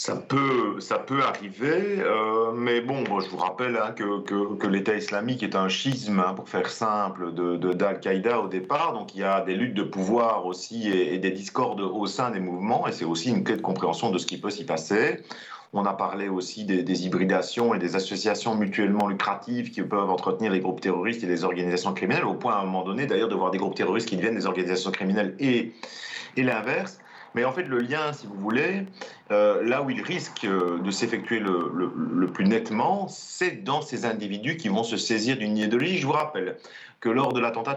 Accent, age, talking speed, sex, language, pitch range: French, 40-59, 220 wpm, male, French, 95-135 Hz